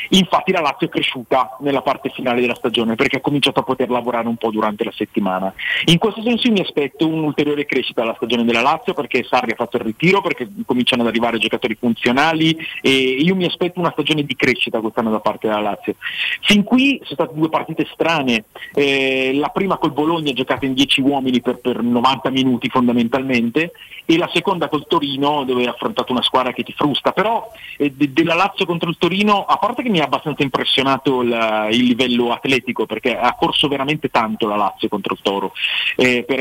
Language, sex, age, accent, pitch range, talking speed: Italian, male, 40-59, native, 125-165 Hz, 200 wpm